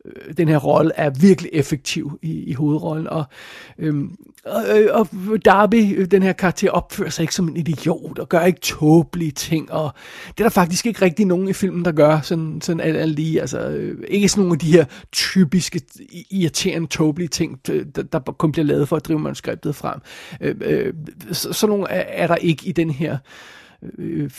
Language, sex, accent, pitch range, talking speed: Danish, male, native, 155-185 Hz, 190 wpm